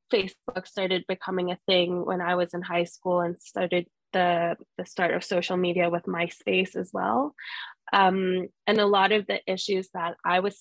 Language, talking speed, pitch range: English, 190 wpm, 175-205 Hz